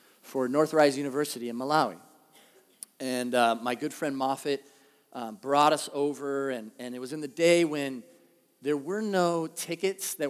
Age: 40-59